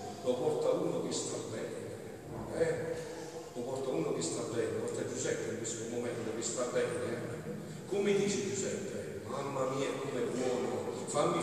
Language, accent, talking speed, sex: Italian, native, 165 wpm, male